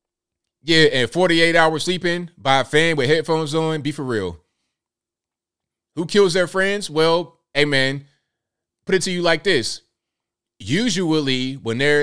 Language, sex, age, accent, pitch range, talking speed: English, male, 30-49, American, 115-155 Hz, 150 wpm